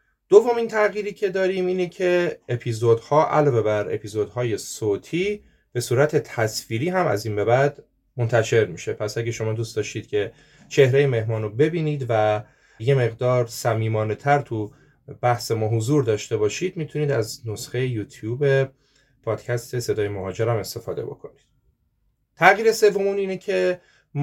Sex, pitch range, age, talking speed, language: male, 115-150 Hz, 30-49, 140 wpm, Persian